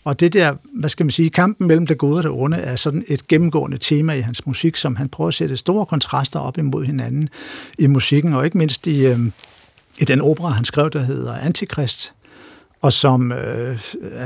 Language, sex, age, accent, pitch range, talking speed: Danish, male, 60-79, native, 135-170 Hz, 210 wpm